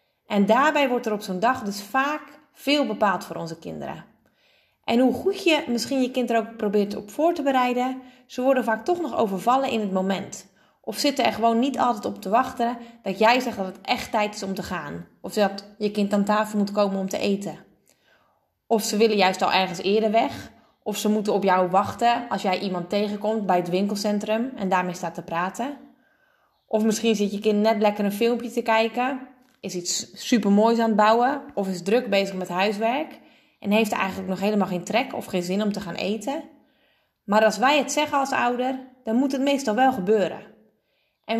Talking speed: 210 wpm